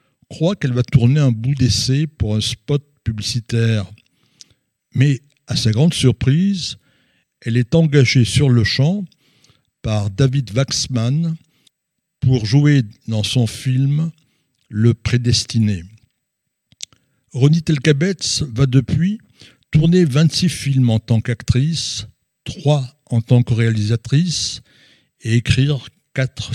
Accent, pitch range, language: French, 115-145 Hz, French